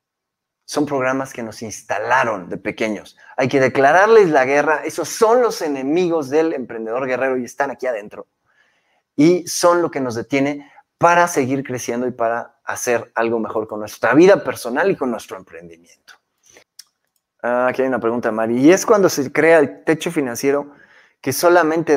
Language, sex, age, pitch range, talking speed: Spanish, male, 30-49, 130-180 Hz, 165 wpm